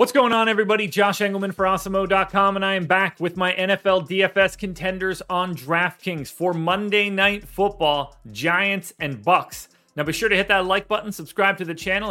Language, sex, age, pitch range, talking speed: English, male, 30-49, 160-195 Hz, 190 wpm